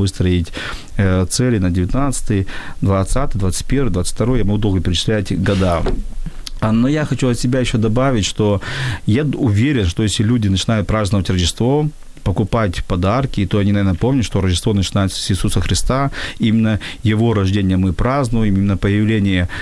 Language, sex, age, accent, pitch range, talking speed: Ukrainian, male, 40-59, native, 100-120 Hz, 145 wpm